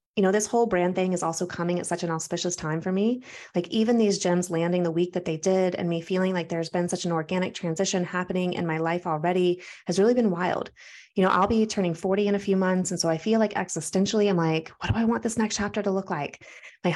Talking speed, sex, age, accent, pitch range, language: 260 wpm, female, 20-39, American, 175-200 Hz, English